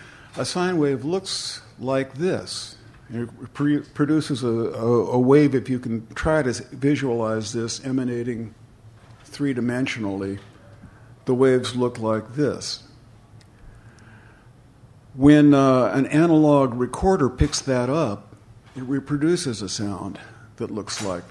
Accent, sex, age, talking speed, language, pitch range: American, male, 60-79, 115 wpm, English, 110-140 Hz